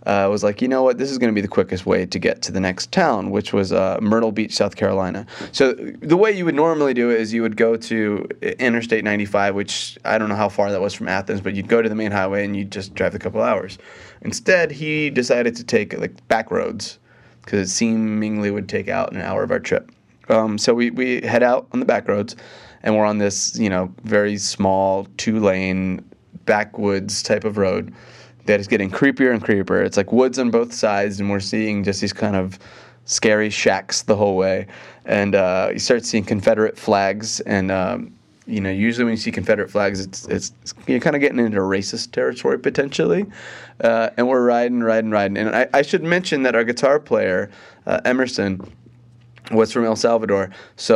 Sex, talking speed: male, 215 wpm